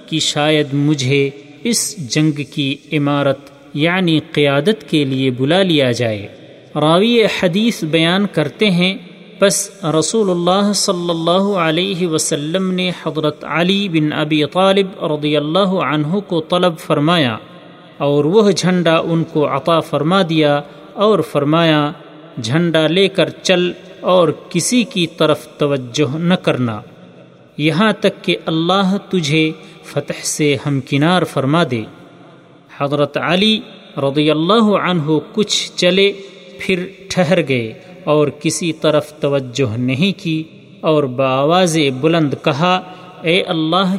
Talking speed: 125 wpm